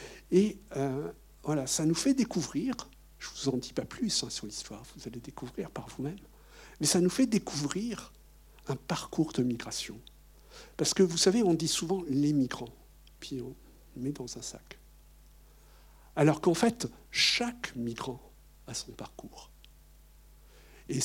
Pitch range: 125-175 Hz